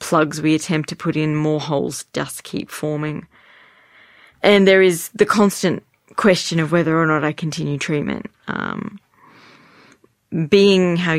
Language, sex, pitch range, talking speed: English, female, 145-170 Hz, 145 wpm